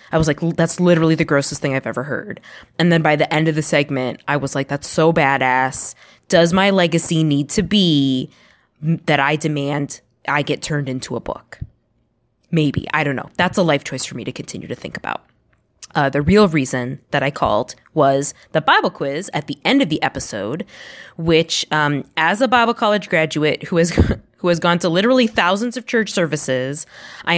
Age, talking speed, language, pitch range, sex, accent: 20-39, 200 wpm, English, 145-195 Hz, female, American